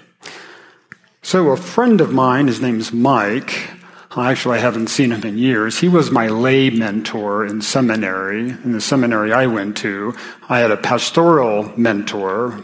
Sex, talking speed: male, 160 wpm